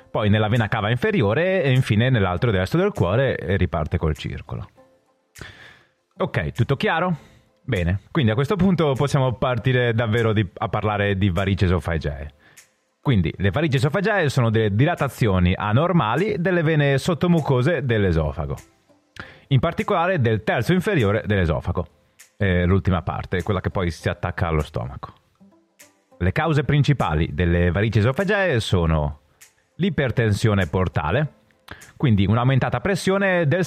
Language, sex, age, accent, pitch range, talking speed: Italian, male, 30-49, native, 100-150 Hz, 125 wpm